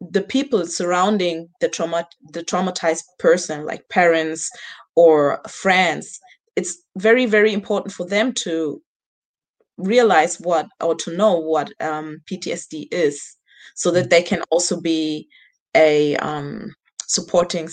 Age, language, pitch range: 20-39, English, 160-195 Hz